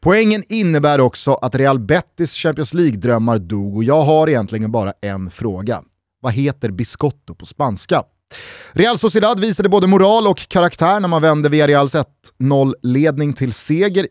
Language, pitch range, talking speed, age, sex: Swedish, 125-190 Hz, 155 wpm, 30-49, male